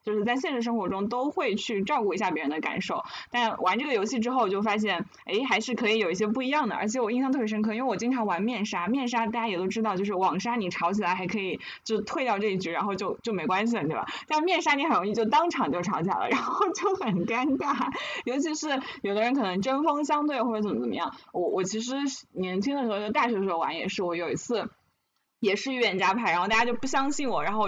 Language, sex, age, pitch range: Chinese, female, 20-39, 190-255 Hz